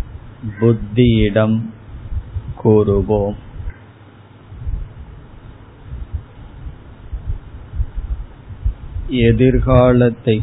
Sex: male